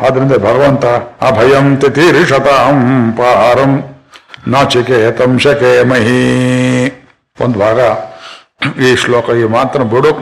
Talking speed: 75 wpm